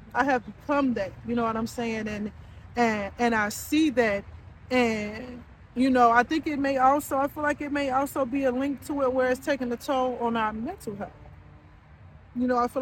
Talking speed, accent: 220 wpm, American